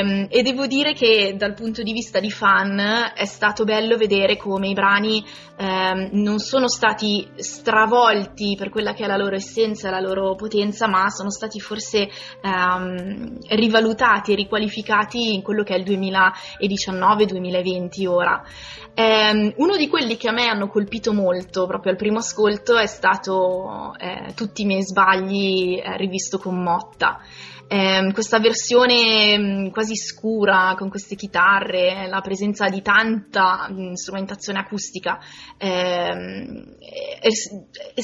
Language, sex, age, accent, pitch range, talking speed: Italian, female, 20-39, native, 190-220 Hz, 135 wpm